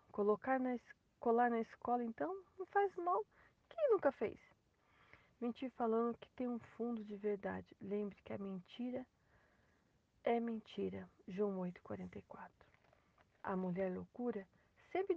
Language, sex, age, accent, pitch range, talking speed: Portuguese, female, 40-59, Brazilian, 205-270 Hz, 125 wpm